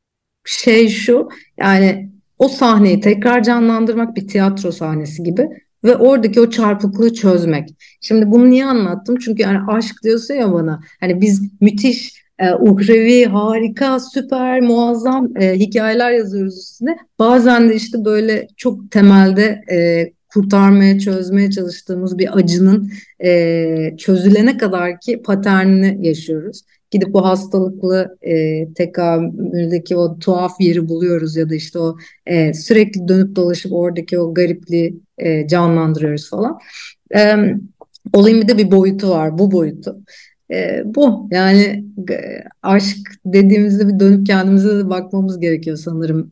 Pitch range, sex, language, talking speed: 175-220 Hz, female, Turkish, 130 wpm